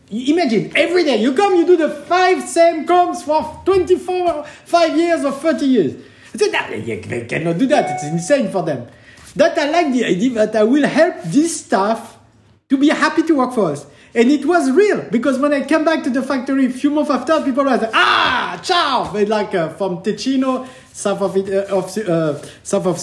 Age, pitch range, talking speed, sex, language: 50-69, 195-300 Hz, 215 wpm, male, English